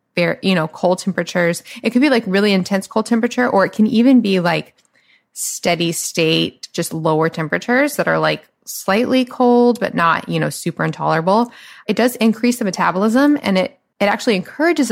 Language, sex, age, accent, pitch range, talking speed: English, female, 20-39, American, 170-225 Hz, 175 wpm